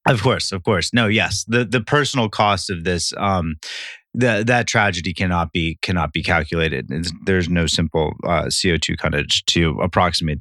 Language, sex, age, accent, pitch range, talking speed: English, male, 30-49, American, 85-100 Hz, 175 wpm